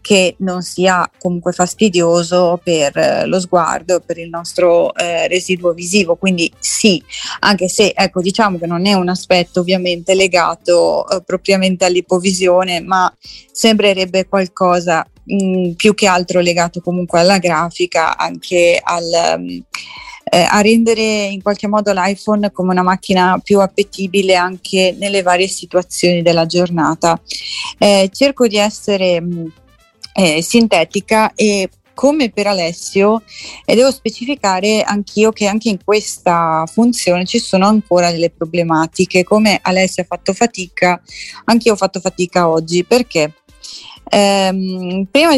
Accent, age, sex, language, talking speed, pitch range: native, 30-49, female, Italian, 125 wpm, 175-210 Hz